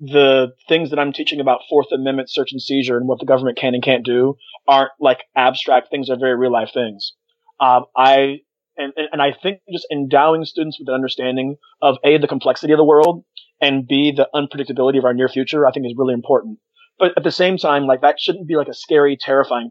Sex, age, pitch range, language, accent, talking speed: male, 30-49, 130-155 Hz, English, American, 220 wpm